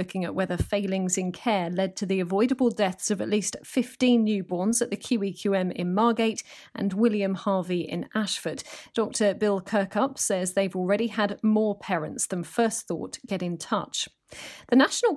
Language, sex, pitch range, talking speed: English, female, 190-235 Hz, 170 wpm